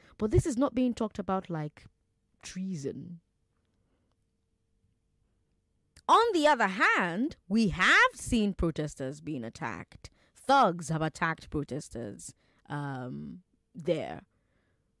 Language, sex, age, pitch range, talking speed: English, female, 20-39, 140-225 Hz, 100 wpm